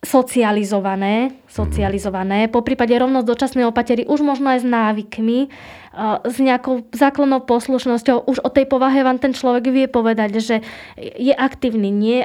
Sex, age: female, 20-39